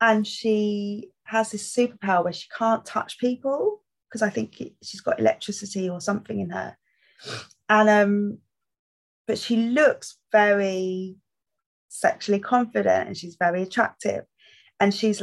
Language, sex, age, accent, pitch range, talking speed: English, female, 20-39, British, 180-215 Hz, 135 wpm